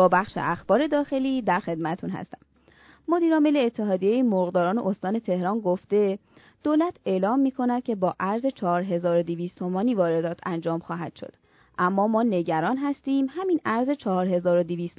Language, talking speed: Persian, 130 wpm